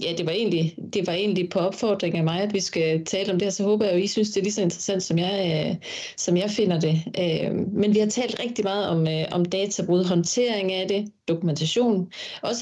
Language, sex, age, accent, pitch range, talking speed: Danish, female, 30-49, native, 175-210 Hz, 245 wpm